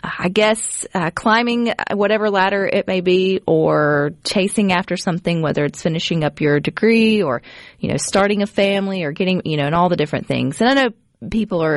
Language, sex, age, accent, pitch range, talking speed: English, female, 30-49, American, 165-220 Hz, 200 wpm